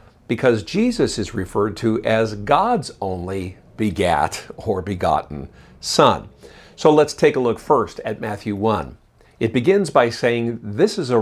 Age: 50-69